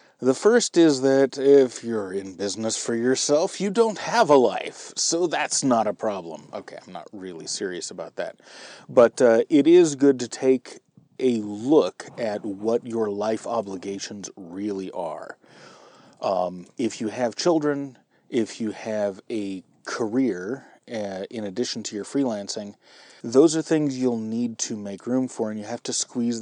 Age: 30-49